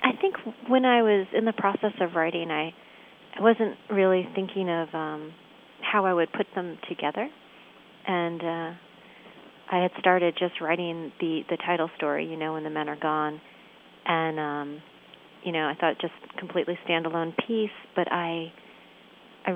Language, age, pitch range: English, 30-49, 155-180 Hz